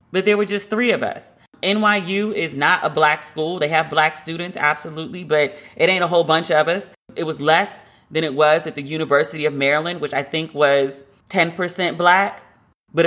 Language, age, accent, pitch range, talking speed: English, 30-49, American, 145-175 Hz, 205 wpm